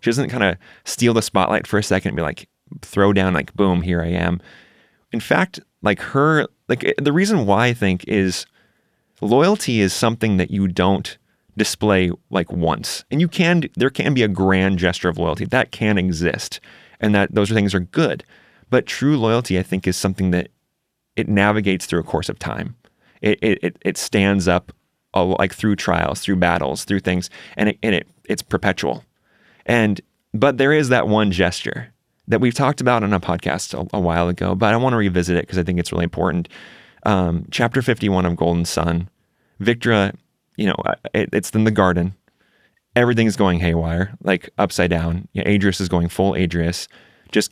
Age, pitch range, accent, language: 30-49, 90-105 Hz, American, English